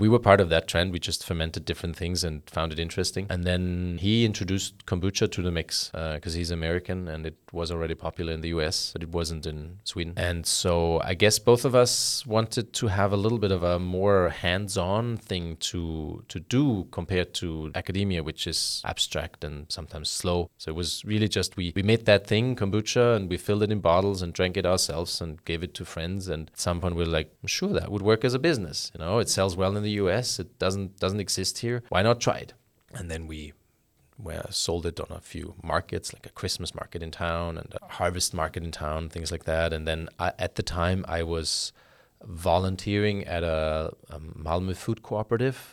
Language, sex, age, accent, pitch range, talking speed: English, male, 30-49, German, 85-100 Hz, 220 wpm